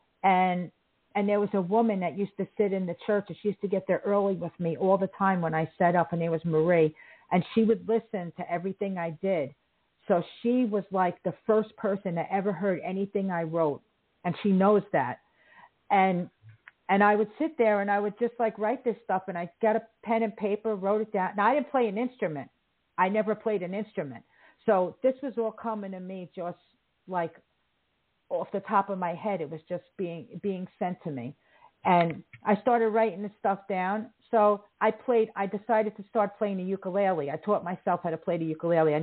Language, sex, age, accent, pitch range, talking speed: English, female, 50-69, American, 175-210 Hz, 220 wpm